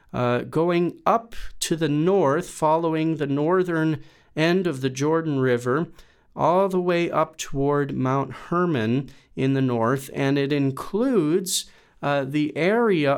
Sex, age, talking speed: male, 40-59, 135 wpm